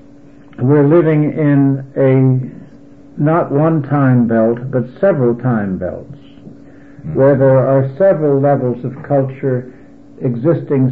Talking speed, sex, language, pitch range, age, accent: 110 wpm, male, English, 120-145 Hz, 60-79, American